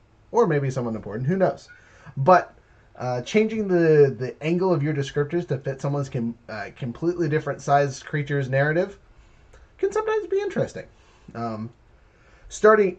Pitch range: 125-160 Hz